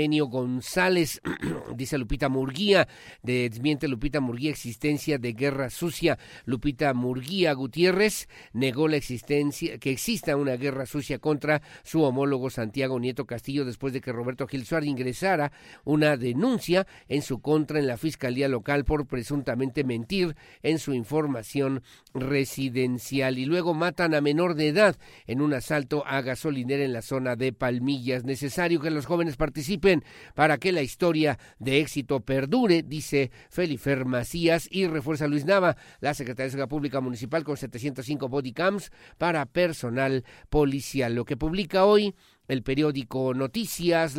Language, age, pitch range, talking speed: Spanish, 50-69, 130-165 Hz, 145 wpm